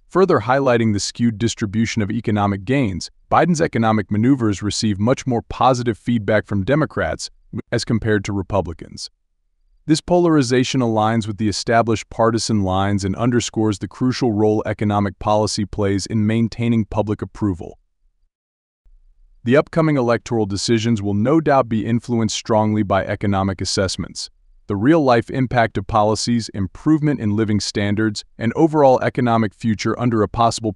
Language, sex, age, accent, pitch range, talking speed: English, male, 30-49, American, 100-120 Hz, 140 wpm